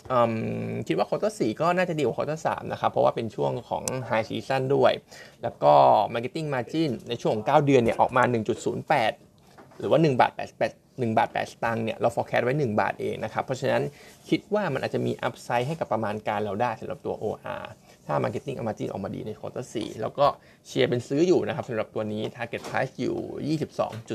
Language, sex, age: Thai, male, 20-39